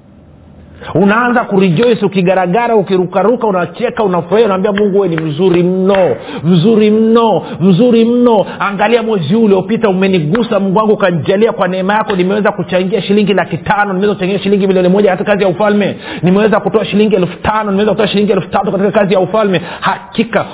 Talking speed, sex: 155 wpm, male